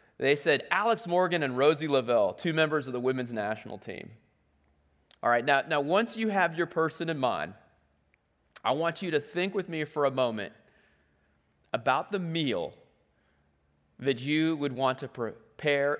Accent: American